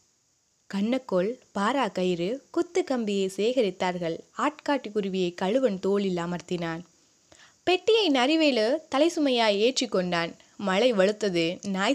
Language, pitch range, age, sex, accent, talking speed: Tamil, 180-255 Hz, 20-39, female, native, 90 wpm